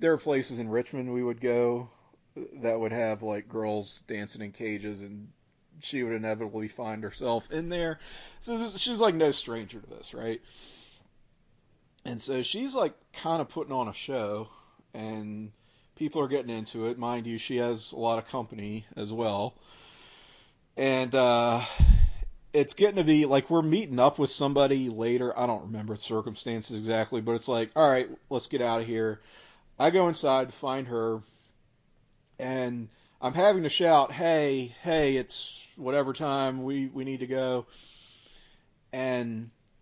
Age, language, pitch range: 40-59, English, 110-140 Hz